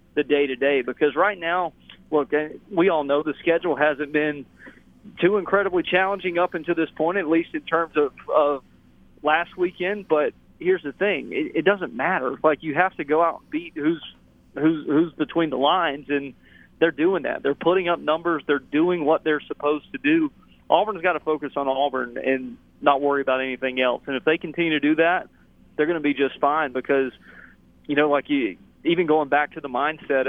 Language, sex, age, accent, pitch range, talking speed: English, male, 30-49, American, 135-170 Hz, 200 wpm